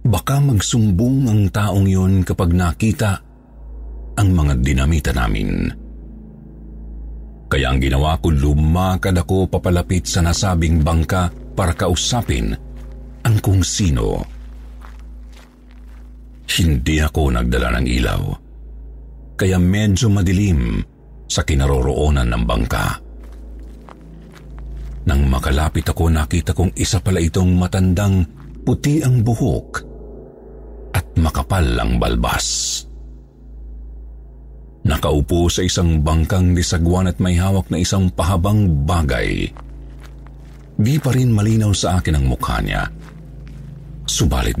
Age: 50-69